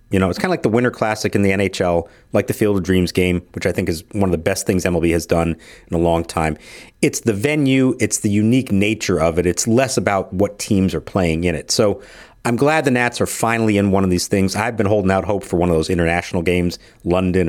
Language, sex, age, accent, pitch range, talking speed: English, male, 40-59, American, 90-115 Hz, 260 wpm